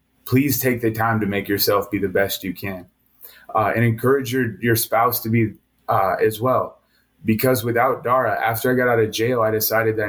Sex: male